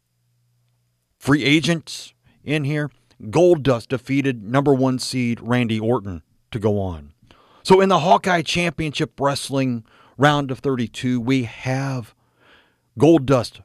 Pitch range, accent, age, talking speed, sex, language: 115-150 Hz, American, 40-59, 115 wpm, male, English